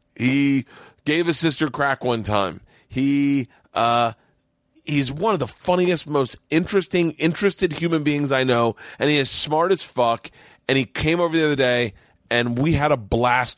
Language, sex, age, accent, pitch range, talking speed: English, male, 30-49, American, 115-185 Hz, 170 wpm